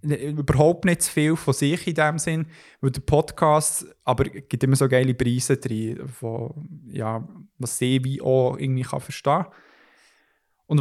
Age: 20-39